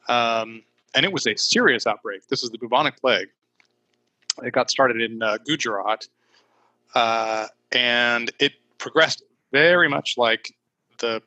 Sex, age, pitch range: male, 20-39, 110-125 Hz